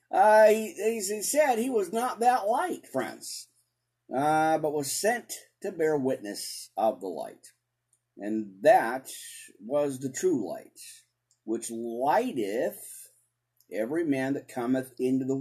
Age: 50-69